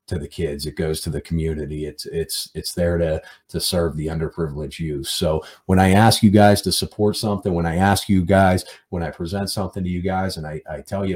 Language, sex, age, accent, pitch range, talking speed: English, male, 40-59, American, 80-95 Hz, 235 wpm